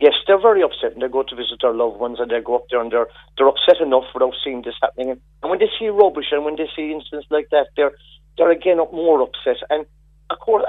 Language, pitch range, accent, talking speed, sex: English, 140-185 Hz, British, 260 wpm, male